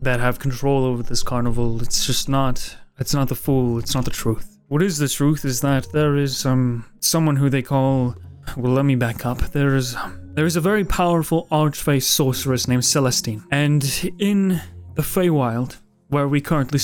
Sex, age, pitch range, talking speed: male, 30-49, 120-150 Hz, 190 wpm